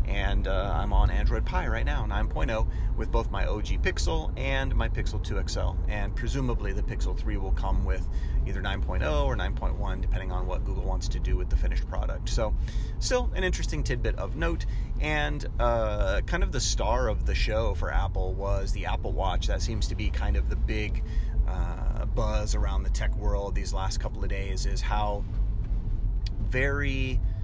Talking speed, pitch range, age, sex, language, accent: 190 wpm, 90-110 Hz, 30-49, male, English, American